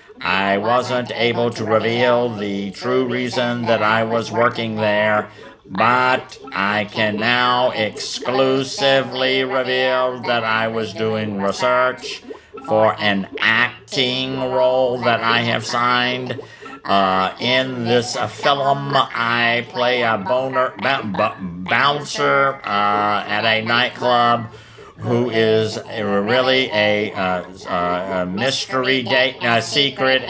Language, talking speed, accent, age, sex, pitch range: English, 110 wpm, American, 50-69, male, 110-130 Hz